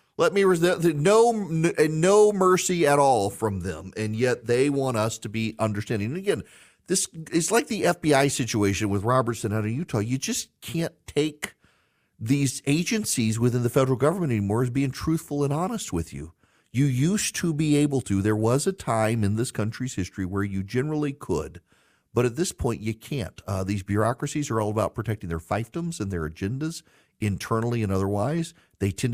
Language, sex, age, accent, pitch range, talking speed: English, male, 40-59, American, 100-140 Hz, 180 wpm